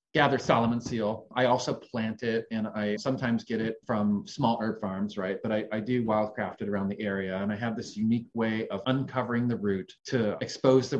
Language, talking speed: English, 215 wpm